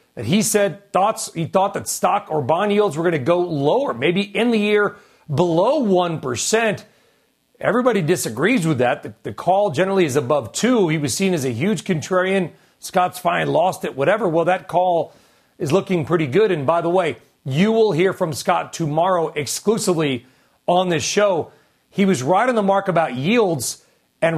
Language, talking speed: English, 180 wpm